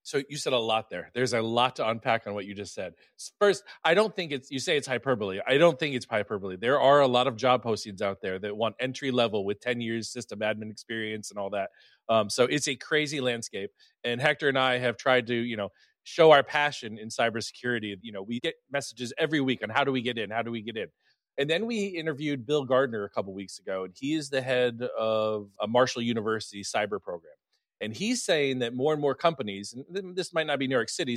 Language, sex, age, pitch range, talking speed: English, male, 30-49, 110-150 Hz, 245 wpm